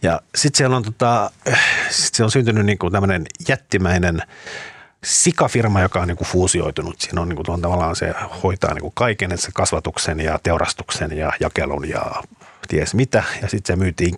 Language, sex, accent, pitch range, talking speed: Finnish, male, native, 85-110 Hz, 150 wpm